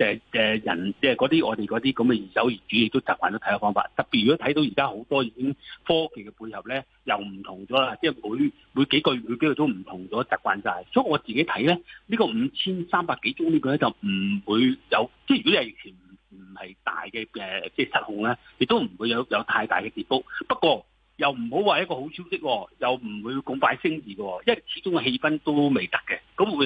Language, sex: Chinese, male